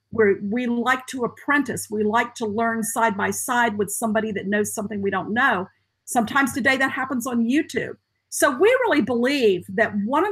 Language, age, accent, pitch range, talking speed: English, 50-69, American, 210-260 Hz, 190 wpm